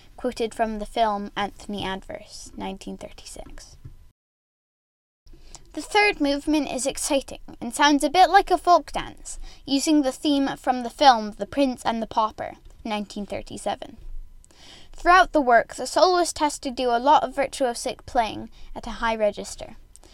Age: 10-29